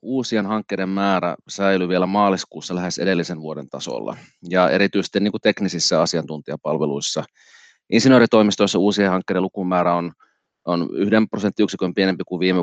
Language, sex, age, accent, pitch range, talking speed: Finnish, male, 30-49, native, 90-105 Hz, 125 wpm